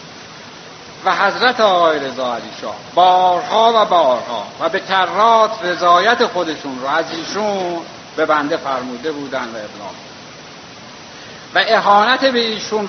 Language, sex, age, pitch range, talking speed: Persian, male, 60-79, 155-210 Hz, 120 wpm